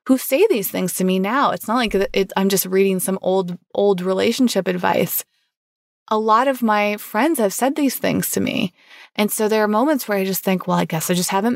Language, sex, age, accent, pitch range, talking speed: English, female, 20-39, American, 190-230 Hz, 230 wpm